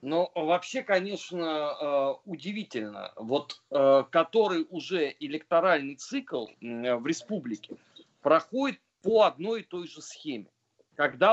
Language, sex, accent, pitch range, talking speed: Russian, male, native, 175-225 Hz, 100 wpm